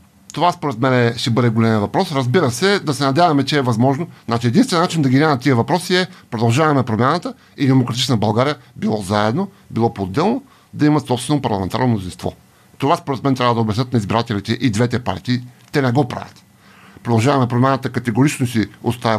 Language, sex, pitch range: Bulgarian, male, 115-155 Hz